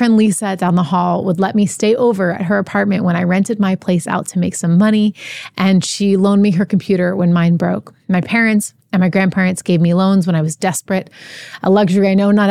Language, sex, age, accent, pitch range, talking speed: English, female, 30-49, American, 180-215 Hz, 230 wpm